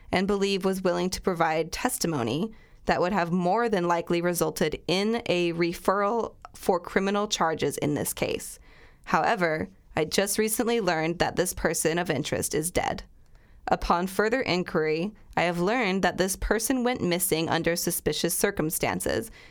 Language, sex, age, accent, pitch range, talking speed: English, female, 20-39, American, 165-210 Hz, 150 wpm